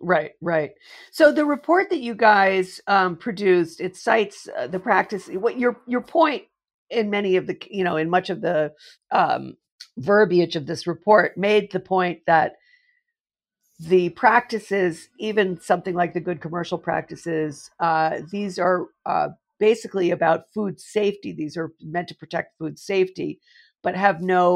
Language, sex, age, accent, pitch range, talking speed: English, female, 50-69, American, 170-225 Hz, 160 wpm